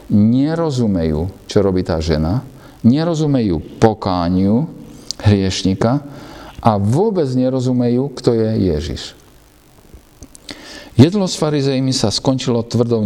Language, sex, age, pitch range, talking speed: Slovak, male, 50-69, 100-140 Hz, 90 wpm